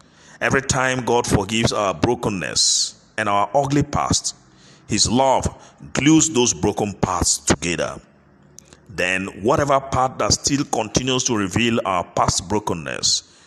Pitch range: 95-130 Hz